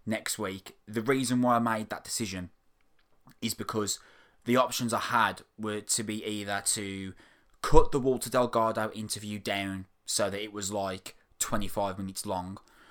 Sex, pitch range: male, 100-115 Hz